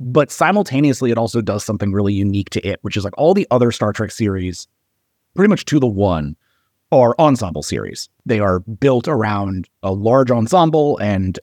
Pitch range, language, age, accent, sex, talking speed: 105-145 Hz, English, 30-49, American, male, 185 wpm